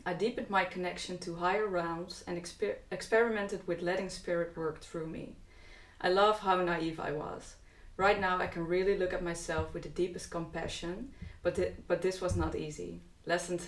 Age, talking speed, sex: 20-39, 185 wpm, female